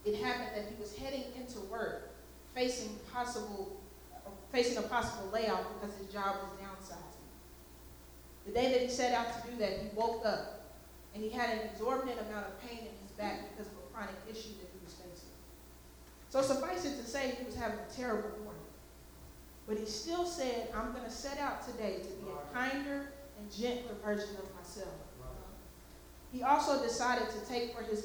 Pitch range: 195-240 Hz